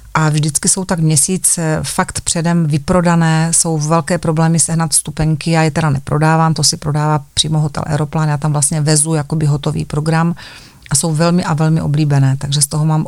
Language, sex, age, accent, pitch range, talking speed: Czech, female, 40-59, native, 150-175 Hz, 185 wpm